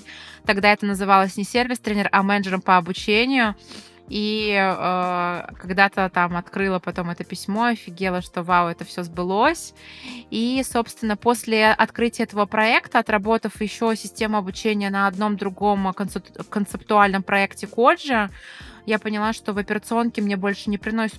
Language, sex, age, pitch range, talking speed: Russian, female, 20-39, 190-220 Hz, 135 wpm